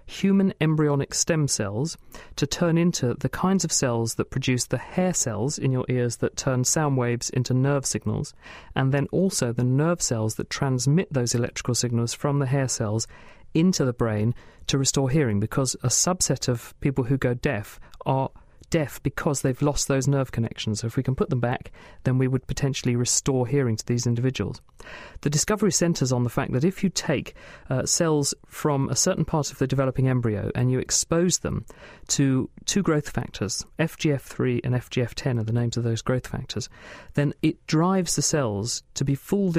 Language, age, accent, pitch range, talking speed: English, 40-59, British, 120-150 Hz, 190 wpm